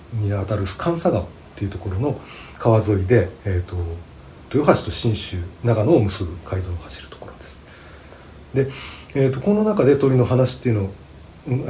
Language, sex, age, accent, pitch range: Japanese, male, 40-59, native, 90-125 Hz